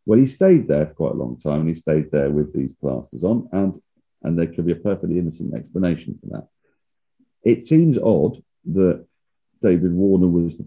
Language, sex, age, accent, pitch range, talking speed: English, male, 40-59, British, 80-100 Hz, 200 wpm